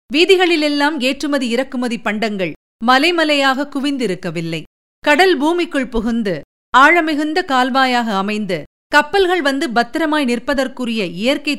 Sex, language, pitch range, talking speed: female, Tamil, 215-305 Hz, 90 wpm